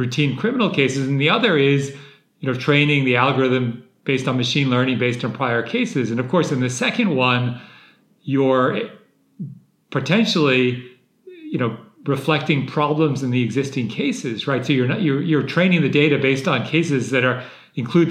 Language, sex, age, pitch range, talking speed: English, male, 40-59, 125-155 Hz, 170 wpm